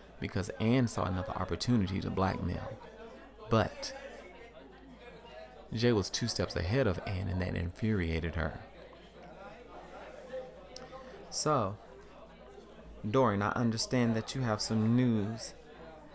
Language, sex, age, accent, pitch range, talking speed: English, male, 30-49, American, 95-120 Hz, 105 wpm